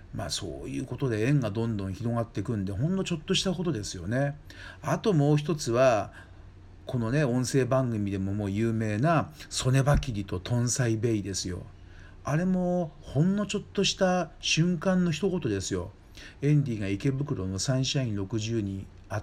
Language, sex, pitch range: Japanese, male, 95-145 Hz